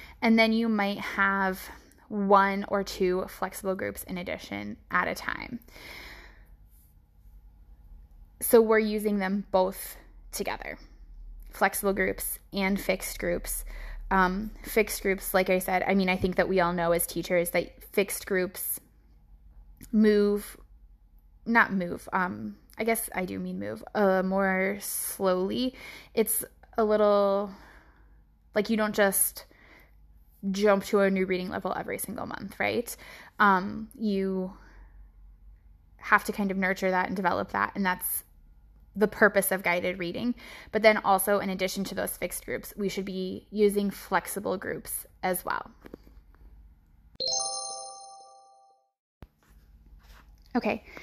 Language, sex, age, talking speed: English, female, 20-39, 130 wpm